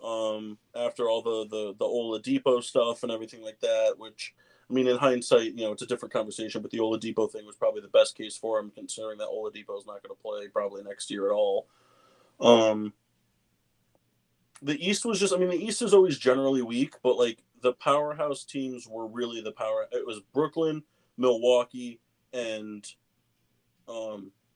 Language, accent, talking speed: English, American, 185 wpm